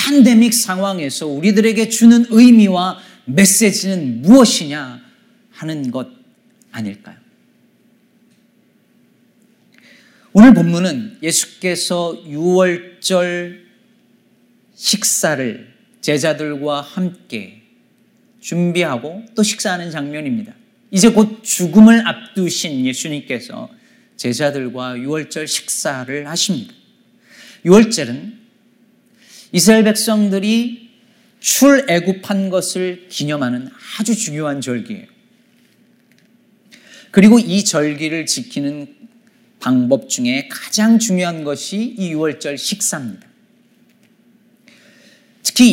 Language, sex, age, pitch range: Korean, male, 40-59, 170-230 Hz